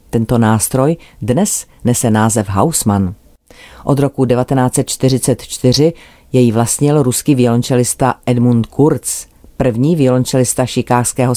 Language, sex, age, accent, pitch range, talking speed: Czech, female, 40-59, native, 115-140 Hz, 95 wpm